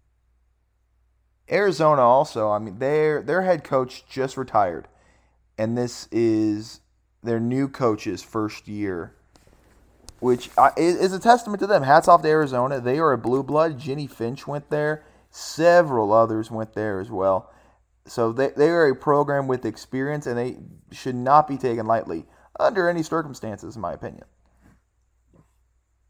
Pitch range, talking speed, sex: 105-130 Hz, 145 wpm, male